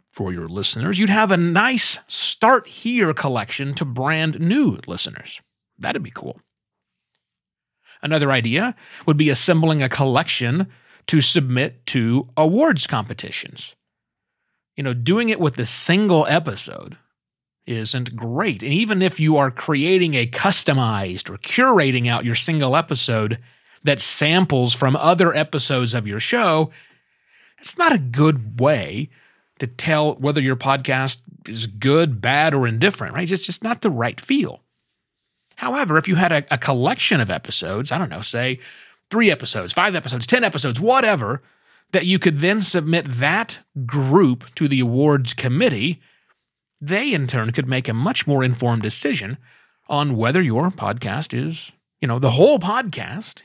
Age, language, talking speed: 30-49, English, 150 wpm